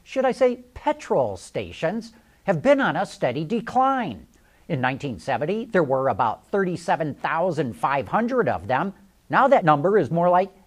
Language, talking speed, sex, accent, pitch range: English, 140 wpm, male, American, 150-230 Hz